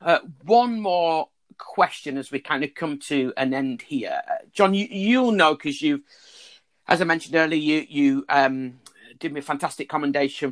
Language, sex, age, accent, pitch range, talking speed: English, male, 40-59, British, 140-195 Hz, 185 wpm